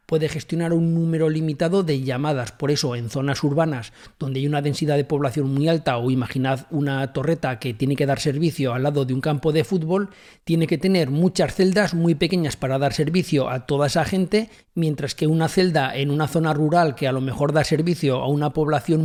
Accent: Spanish